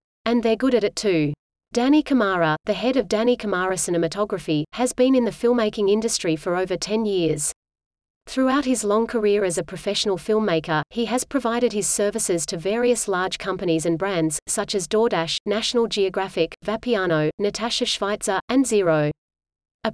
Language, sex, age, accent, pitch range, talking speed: English, female, 30-49, Australian, 180-230 Hz, 165 wpm